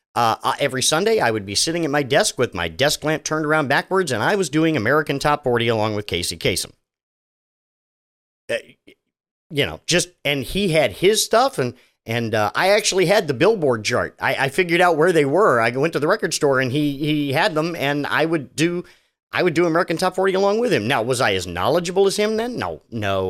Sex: male